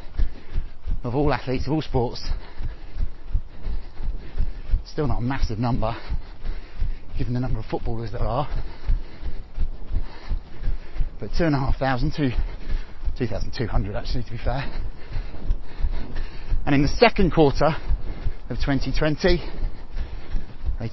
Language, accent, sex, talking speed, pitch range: English, British, male, 120 wpm, 90-145 Hz